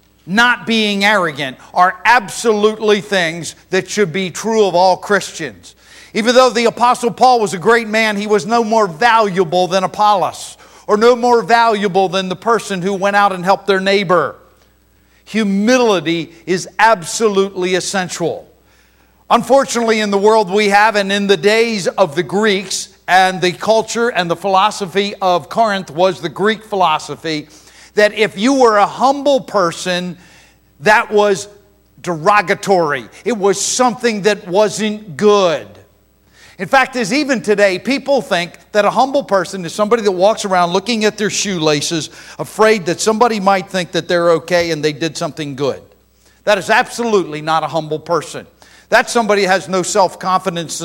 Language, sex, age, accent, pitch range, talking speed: English, male, 50-69, American, 170-215 Hz, 155 wpm